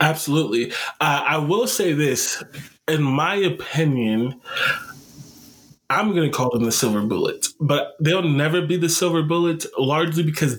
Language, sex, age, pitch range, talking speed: English, male, 20-39, 125-155 Hz, 145 wpm